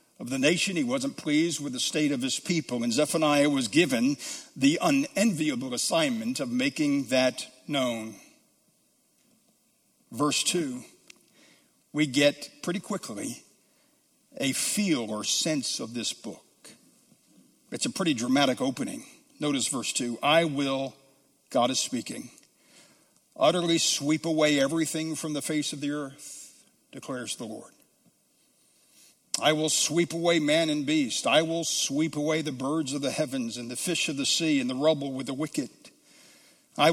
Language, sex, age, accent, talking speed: English, male, 60-79, American, 150 wpm